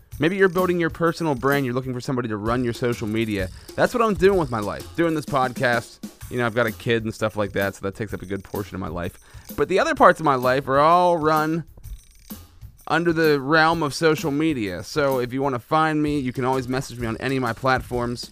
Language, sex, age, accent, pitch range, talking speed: English, male, 30-49, American, 110-145 Hz, 255 wpm